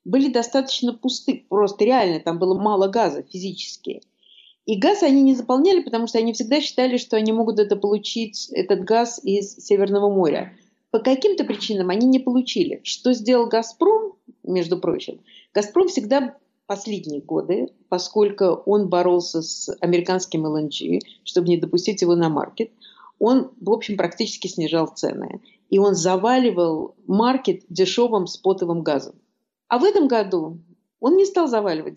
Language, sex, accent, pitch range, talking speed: Russian, female, native, 180-235 Hz, 145 wpm